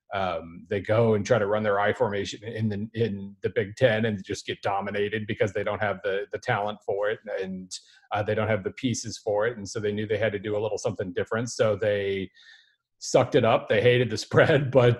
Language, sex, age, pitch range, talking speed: English, male, 40-59, 105-120 Hz, 240 wpm